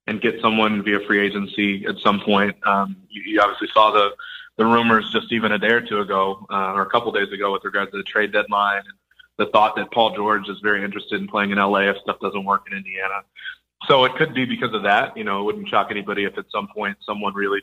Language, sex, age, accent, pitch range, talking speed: English, male, 30-49, American, 100-115 Hz, 255 wpm